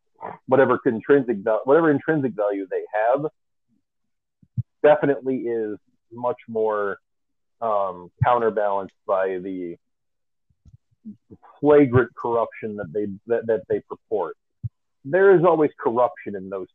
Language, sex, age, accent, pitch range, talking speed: English, male, 40-59, American, 110-155 Hz, 105 wpm